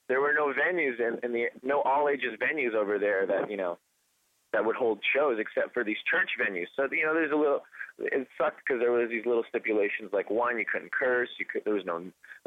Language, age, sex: English, 20-39, male